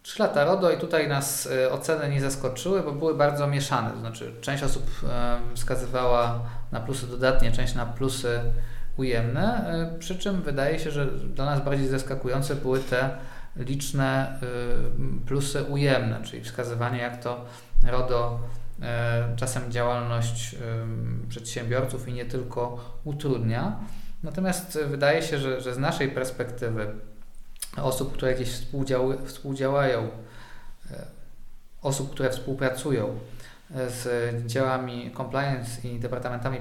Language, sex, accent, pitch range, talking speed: Polish, male, native, 120-140 Hz, 115 wpm